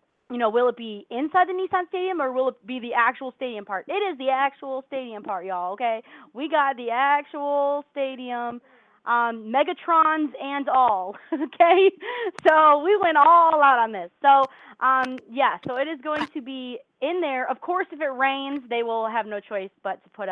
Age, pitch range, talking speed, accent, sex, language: 20-39, 215-290 Hz, 195 wpm, American, female, English